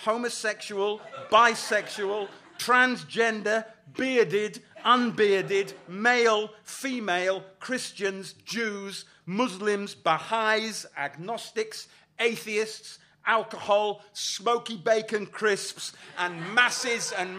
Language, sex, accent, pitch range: English, male, British, 180-240 Hz